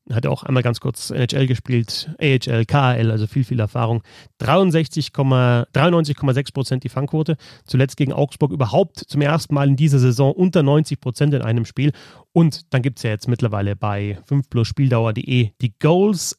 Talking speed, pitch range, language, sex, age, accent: 160 wpm, 120-150 Hz, German, male, 30-49, German